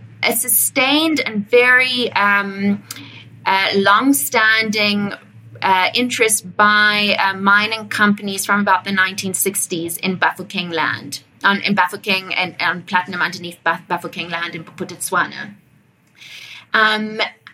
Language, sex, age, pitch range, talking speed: English, female, 20-39, 185-230 Hz, 110 wpm